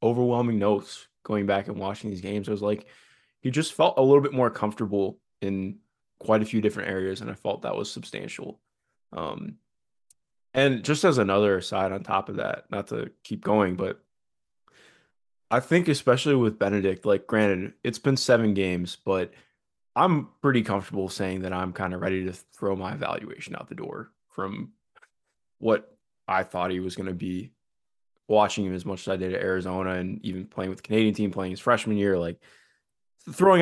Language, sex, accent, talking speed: English, male, American, 185 wpm